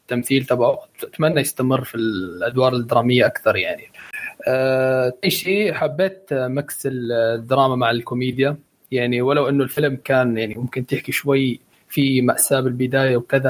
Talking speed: 130 wpm